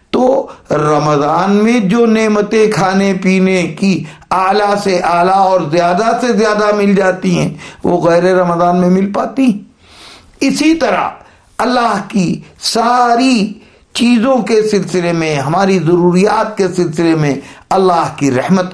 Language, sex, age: Urdu, male, 60-79